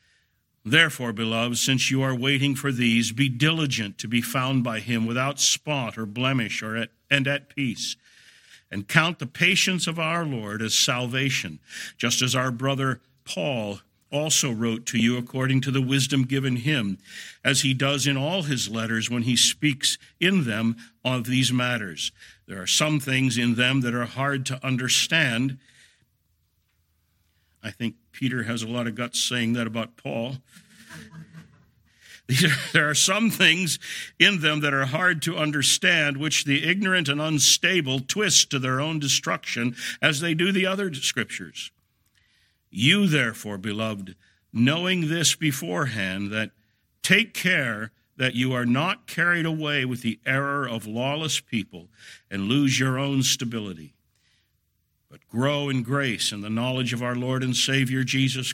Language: English